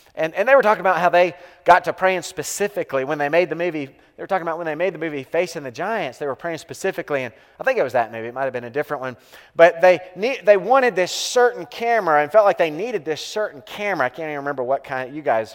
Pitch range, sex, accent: 130-175 Hz, male, American